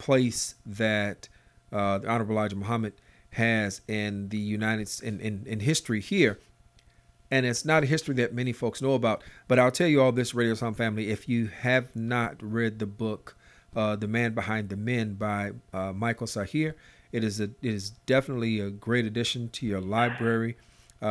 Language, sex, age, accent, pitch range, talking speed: English, male, 40-59, American, 110-125 Hz, 185 wpm